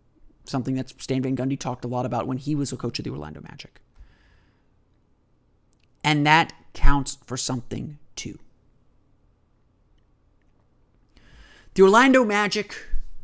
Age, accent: 30-49, American